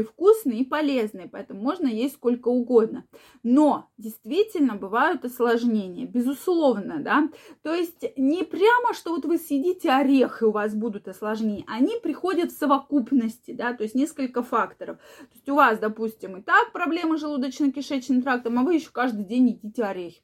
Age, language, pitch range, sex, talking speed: 20-39, Russian, 225-290 Hz, female, 160 wpm